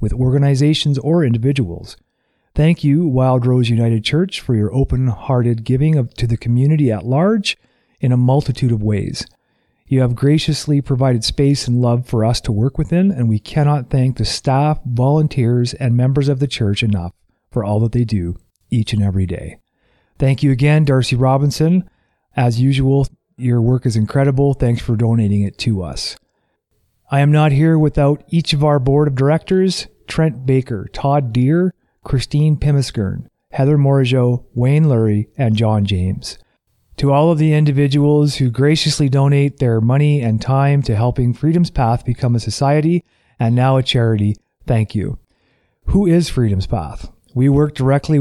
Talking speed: 165 wpm